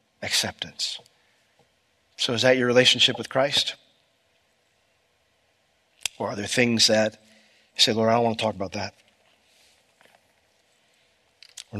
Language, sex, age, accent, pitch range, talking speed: English, male, 40-59, American, 115-140 Hz, 120 wpm